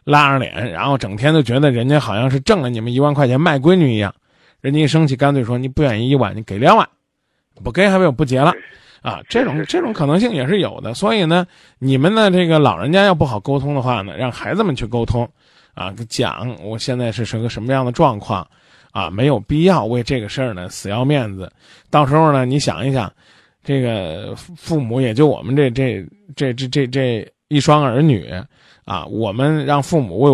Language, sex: Chinese, male